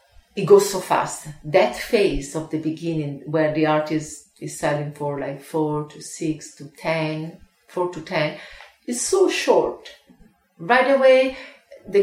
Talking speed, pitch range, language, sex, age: 150 wpm, 160-205 Hz, English, female, 40-59